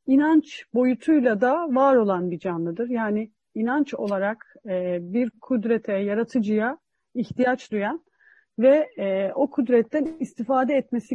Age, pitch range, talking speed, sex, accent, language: 40-59, 205-275 Hz, 110 wpm, female, native, Turkish